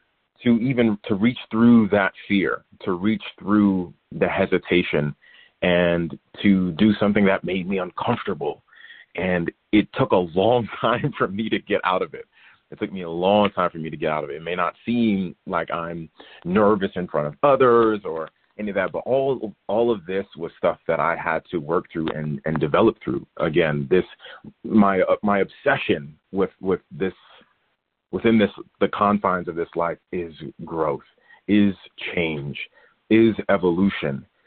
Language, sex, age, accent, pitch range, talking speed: English, male, 30-49, American, 85-105 Hz, 175 wpm